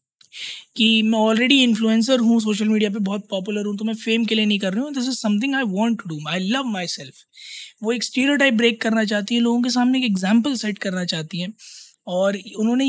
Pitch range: 200-240 Hz